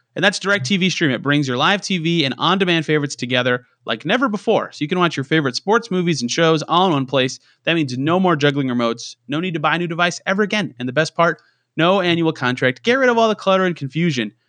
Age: 30-49